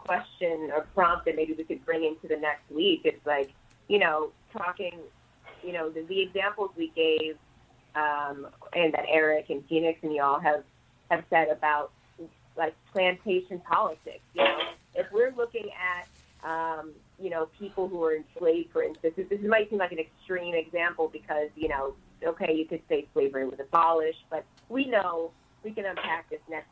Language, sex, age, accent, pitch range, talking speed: English, female, 30-49, American, 155-200 Hz, 175 wpm